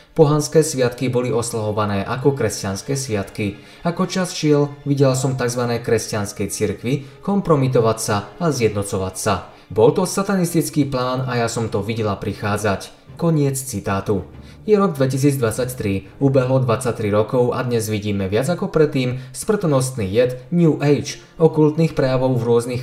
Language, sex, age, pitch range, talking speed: Slovak, male, 20-39, 110-145 Hz, 135 wpm